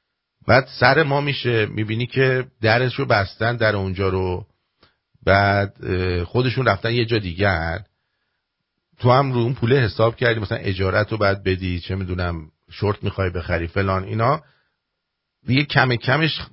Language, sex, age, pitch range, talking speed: English, male, 50-69, 90-125 Hz, 145 wpm